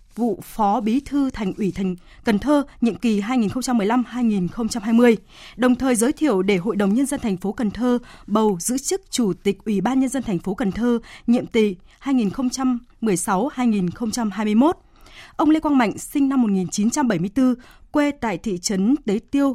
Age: 20-39